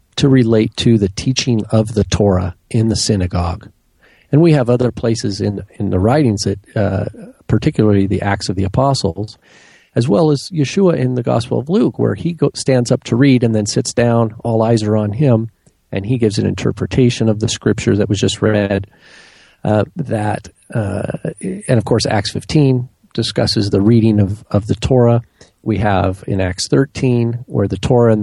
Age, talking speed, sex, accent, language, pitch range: 40-59, 190 wpm, male, American, English, 100-120 Hz